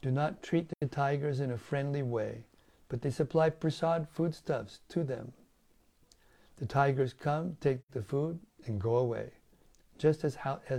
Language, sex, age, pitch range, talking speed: English, male, 60-79, 120-150 Hz, 150 wpm